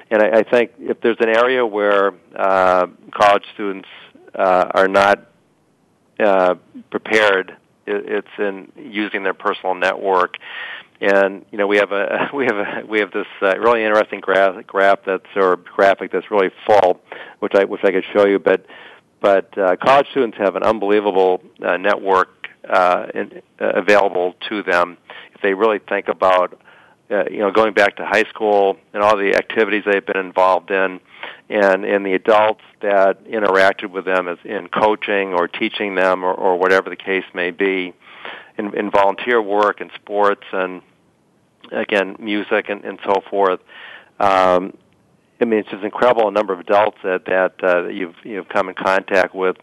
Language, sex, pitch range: English, male, 95-105 Hz